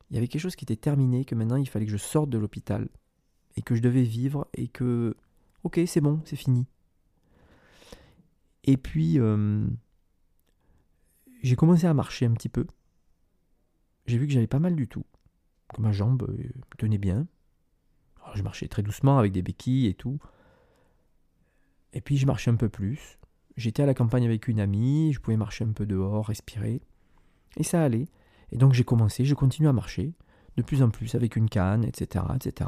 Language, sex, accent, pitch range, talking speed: French, male, French, 105-145 Hz, 190 wpm